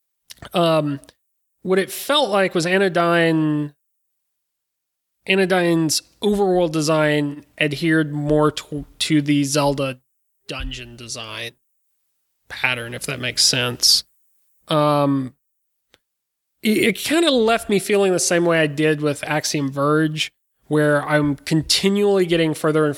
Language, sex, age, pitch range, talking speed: English, male, 30-49, 140-170 Hz, 115 wpm